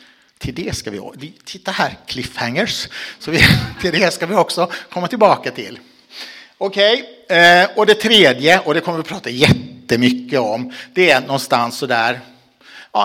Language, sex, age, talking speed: Swedish, male, 60-79, 155 wpm